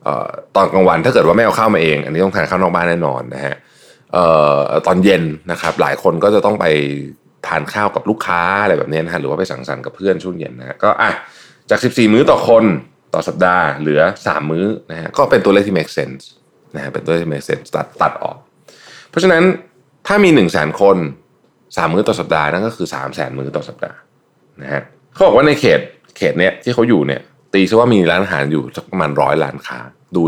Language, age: Thai, 20-39